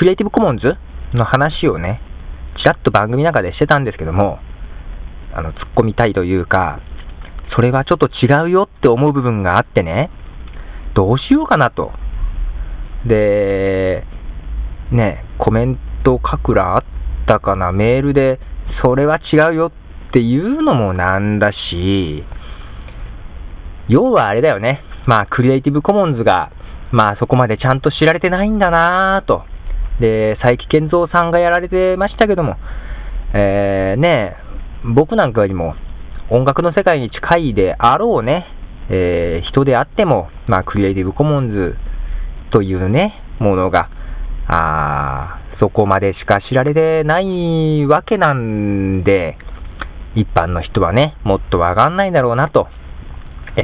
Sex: male